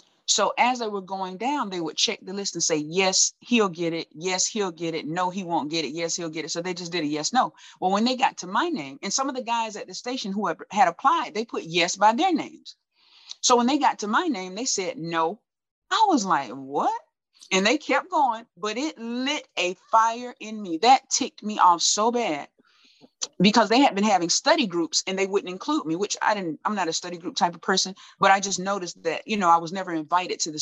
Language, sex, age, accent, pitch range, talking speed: English, female, 30-49, American, 170-230 Hz, 250 wpm